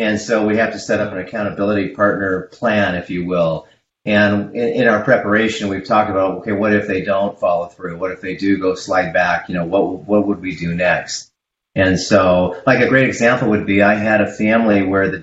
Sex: male